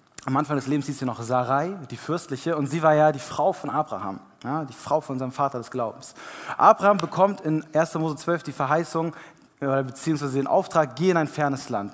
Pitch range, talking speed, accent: 135-165 Hz, 210 wpm, German